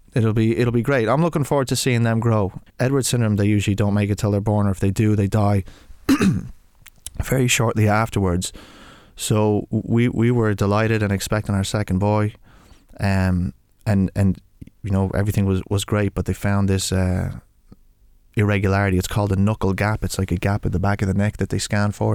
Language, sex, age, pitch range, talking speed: English, male, 20-39, 95-110 Hz, 205 wpm